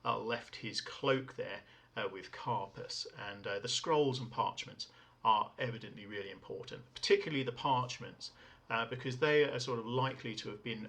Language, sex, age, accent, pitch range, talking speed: English, male, 40-59, British, 120-155 Hz, 170 wpm